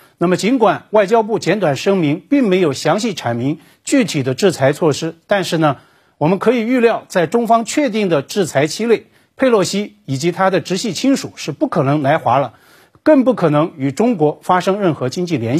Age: 50-69